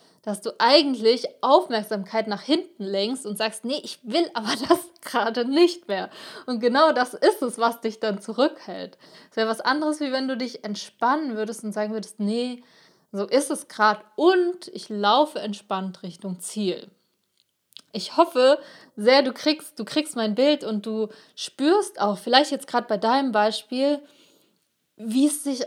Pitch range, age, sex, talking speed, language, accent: 210-270 Hz, 20-39, female, 165 wpm, German, German